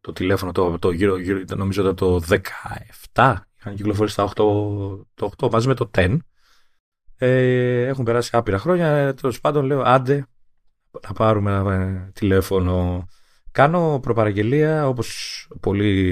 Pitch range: 95-130 Hz